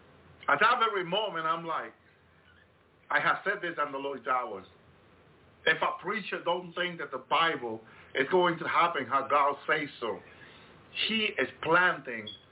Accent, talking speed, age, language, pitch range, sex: American, 160 wpm, 50-69, English, 120-175 Hz, male